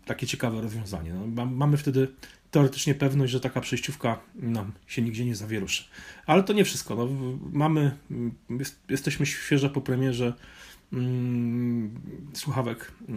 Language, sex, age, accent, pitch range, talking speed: Polish, male, 40-59, native, 115-140 Hz, 120 wpm